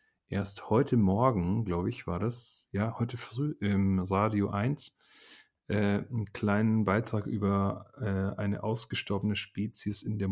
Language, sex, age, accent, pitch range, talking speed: German, male, 30-49, German, 100-115 Hz, 140 wpm